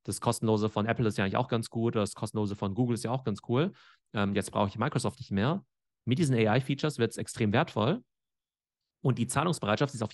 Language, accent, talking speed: German, German, 225 wpm